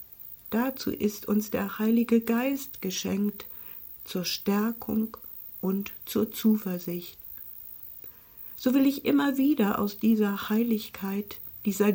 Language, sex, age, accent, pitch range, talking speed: German, female, 60-79, German, 195-240 Hz, 105 wpm